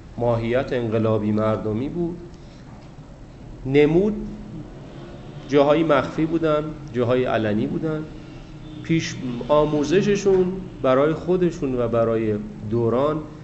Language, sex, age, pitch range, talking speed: Persian, male, 40-59, 120-155 Hz, 80 wpm